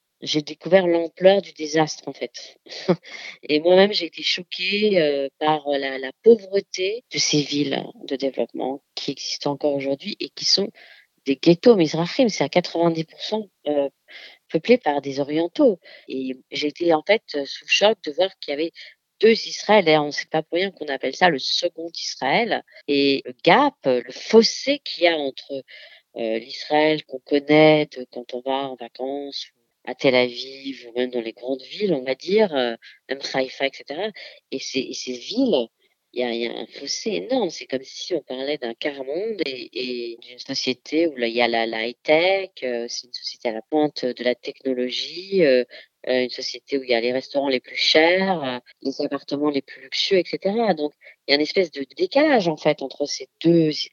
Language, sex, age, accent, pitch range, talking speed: French, female, 40-59, French, 130-175 Hz, 190 wpm